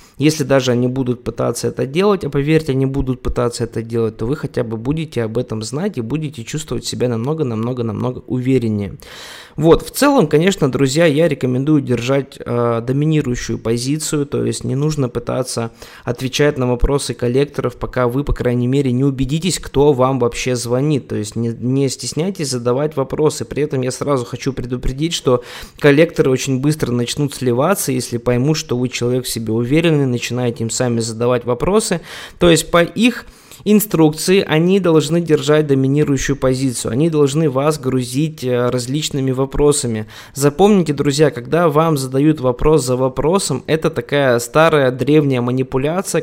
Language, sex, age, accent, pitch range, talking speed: Russian, male, 20-39, native, 125-155 Hz, 155 wpm